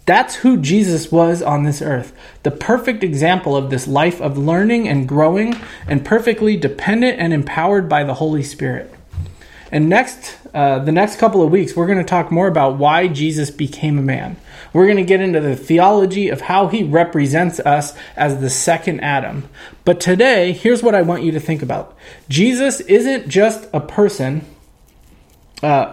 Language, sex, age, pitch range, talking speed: English, male, 20-39, 150-205 Hz, 180 wpm